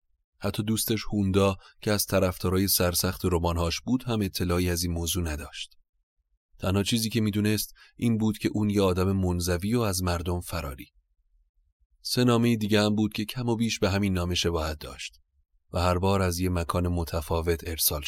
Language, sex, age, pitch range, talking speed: Persian, male, 30-49, 85-100 Hz, 175 wpm